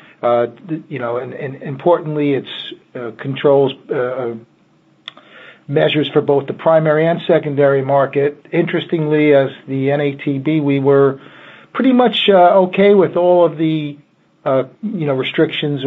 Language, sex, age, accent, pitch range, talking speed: English, male, 50-69, American, 130-155 Hz, 135 wpm